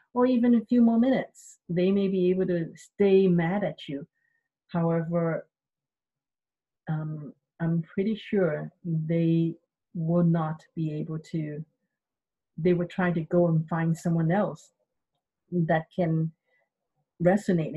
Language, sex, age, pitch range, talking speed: English, female, 40-59, 160-185 Hz, 130 wpm